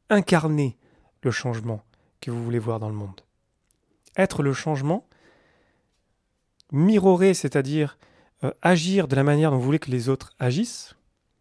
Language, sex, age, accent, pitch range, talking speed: French, male, 30-49, French, 115-140 Hz, 135 wpm